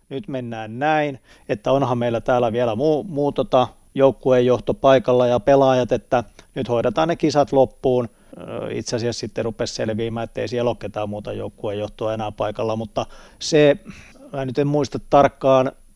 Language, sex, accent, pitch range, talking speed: Finnish, male, native, 115-135 Hz, 155 wpm